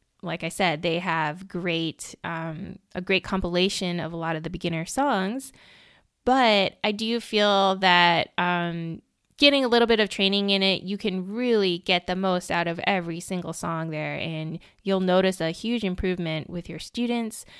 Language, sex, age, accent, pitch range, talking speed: English, female, 20-39, American, 175-215 Hz, 175 wpm